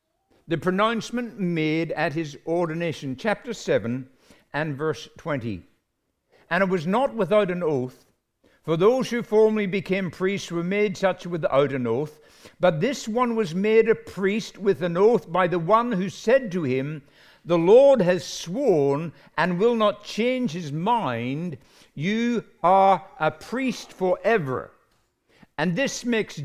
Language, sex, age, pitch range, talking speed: English, male, 60-79, 155-210 Hz, 145 wpm